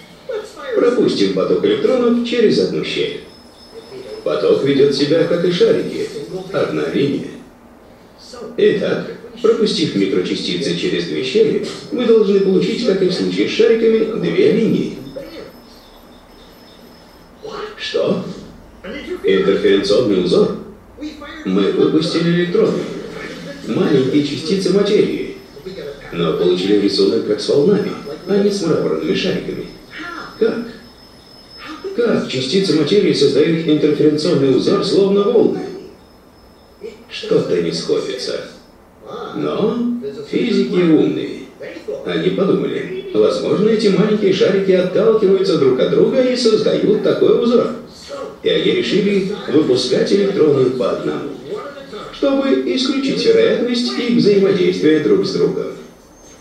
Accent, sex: native, male